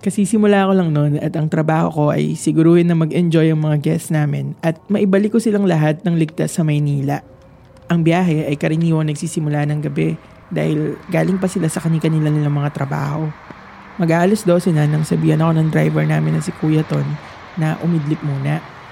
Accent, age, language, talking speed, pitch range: native, 20-39, Filipino, 185 wpm, 150-175 Hz